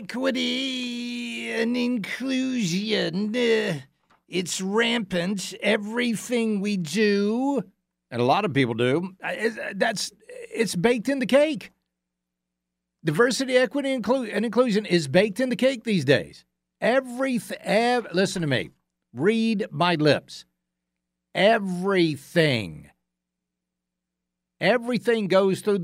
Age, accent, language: 50-69, American, English